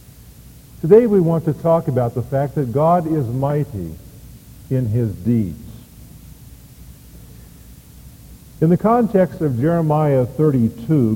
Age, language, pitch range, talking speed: 50-69, English, 120-170 Hz, 115 wpm